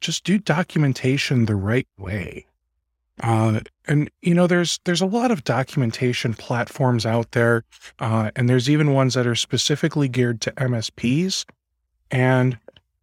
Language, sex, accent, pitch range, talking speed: English, male, American, 110-145 Hz, 145 wpm